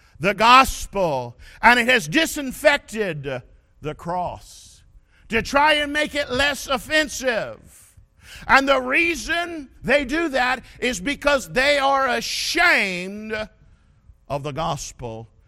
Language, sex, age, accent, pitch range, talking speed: English, male, 50-69, American, 205-280 Hz, 110 wpm